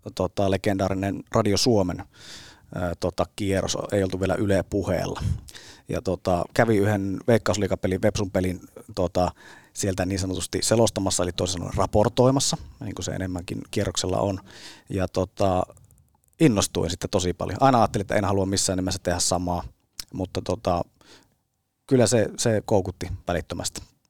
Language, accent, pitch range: Finnish, native, 95-115 Hz